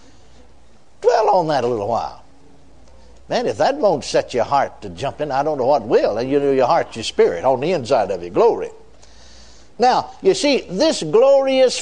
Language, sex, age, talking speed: English, male, 60-79, 195 wpm